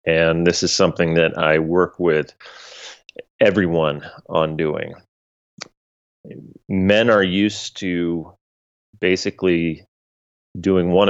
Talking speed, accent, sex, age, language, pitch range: 95 wpm, American, male, 30-49, English, 85-100 Hz